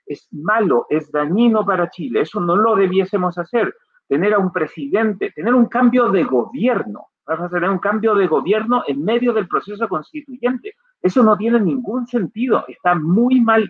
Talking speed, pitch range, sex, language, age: 175 wpm, 185-245 Hz, male, Spanish, 40-59